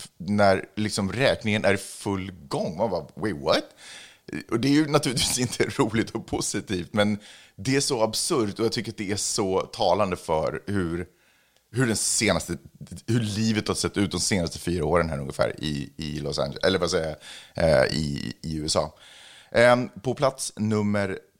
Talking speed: 175 wpm